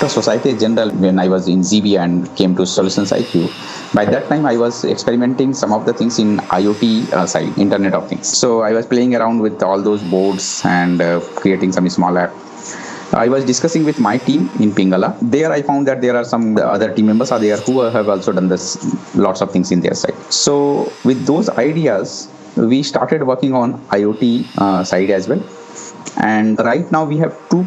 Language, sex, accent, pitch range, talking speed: English, male, Indian, 95-120 Hz, 205 wpm